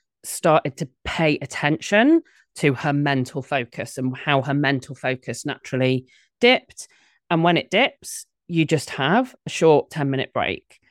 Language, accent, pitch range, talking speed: English, British, 130-165 Hz, 150 wpm